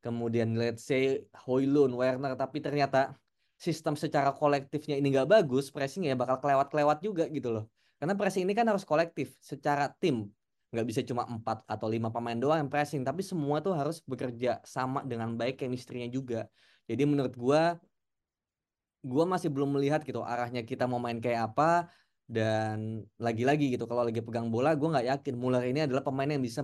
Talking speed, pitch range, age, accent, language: 175 wpm, 120-150 Hz, 10-29, native, Indonesian